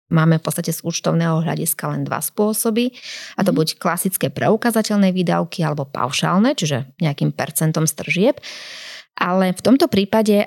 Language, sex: Slovak, female